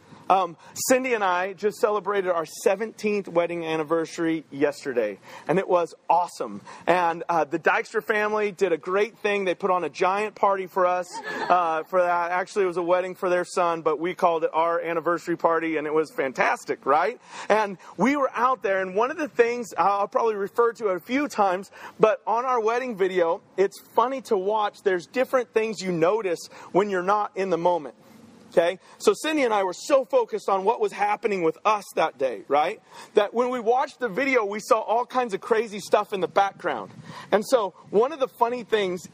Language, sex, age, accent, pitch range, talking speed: English, male, 40-59, American, 175-235 Hz, 200 wpm